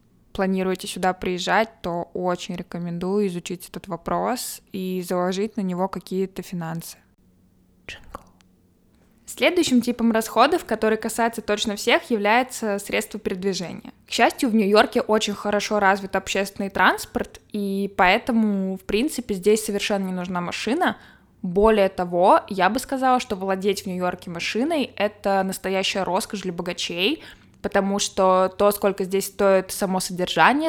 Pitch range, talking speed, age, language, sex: 190-225 Hz, 130 wpm, 20-39, Russian, female